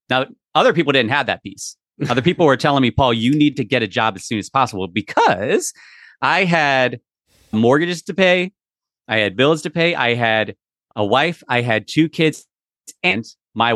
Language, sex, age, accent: English, male, 30-49, American